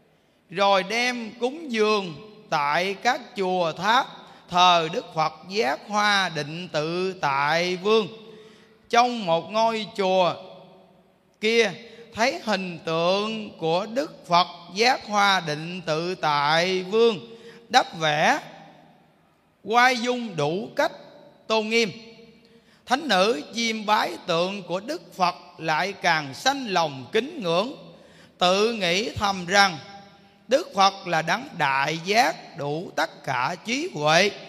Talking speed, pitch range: 125 wpm, 170-225 Hz